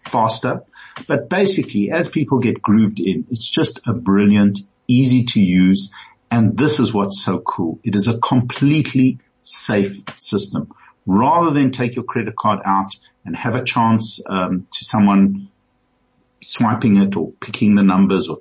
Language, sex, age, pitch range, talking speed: English, male, 50-69, 100-130 Hz, 155 wpm